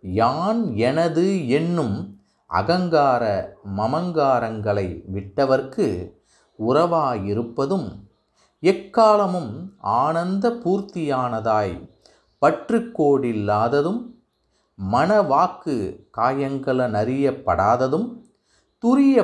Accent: native